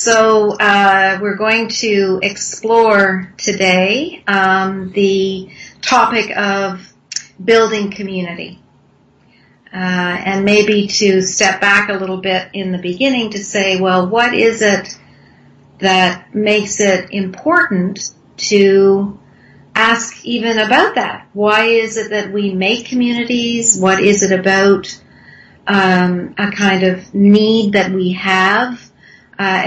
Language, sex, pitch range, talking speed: English, female, 185-215 Hz, 120 wpm